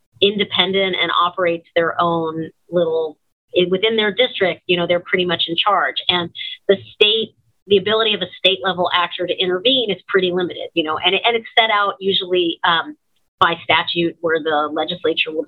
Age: 30-49